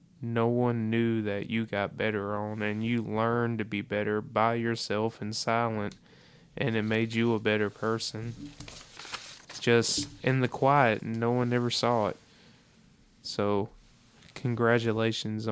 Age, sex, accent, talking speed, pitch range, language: 20-39, male, American, 140 wpm, 110-130 Hz, English